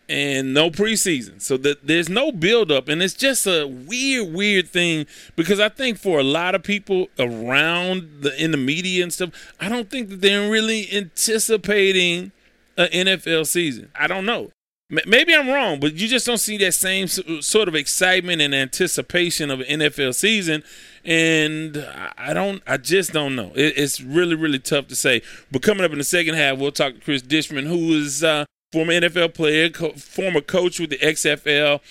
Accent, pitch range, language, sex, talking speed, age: American, 135-180 Hz, English, male, 185 wpm, 30-49